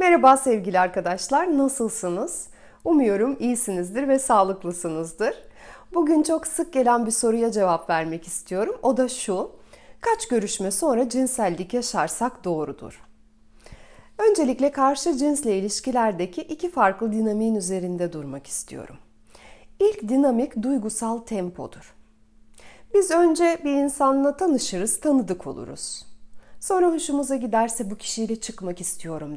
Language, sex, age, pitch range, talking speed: Turkish, female, 40-59, 180-285 Hz, 110 wpm